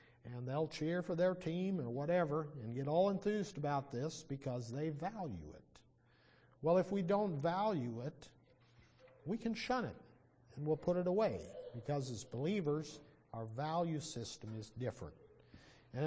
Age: 50-69